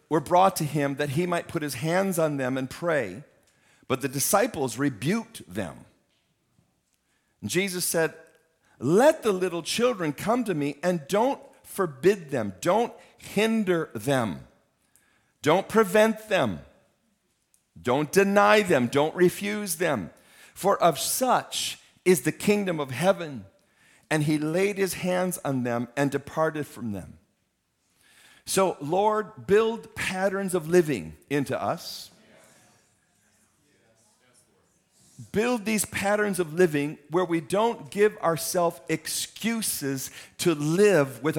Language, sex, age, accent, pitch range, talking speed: English, male, 50-69, American, 145-195 Hz, 125 wpm